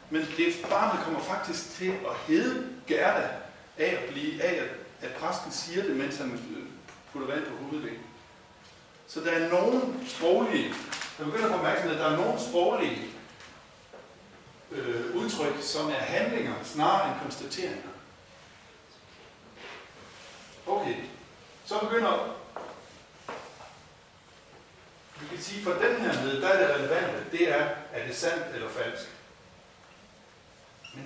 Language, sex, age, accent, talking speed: Danish, male, 60-79, native, 115 wpm